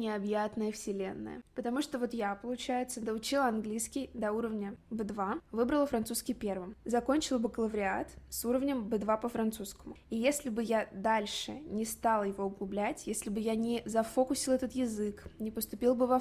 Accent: native